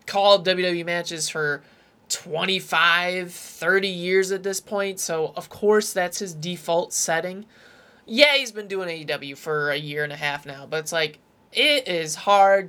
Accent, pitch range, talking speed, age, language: American, 160-195 Hz, 165 wpm, 20-39, English